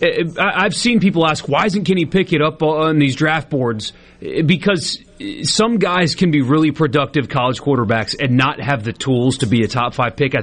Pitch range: 135-190 Hz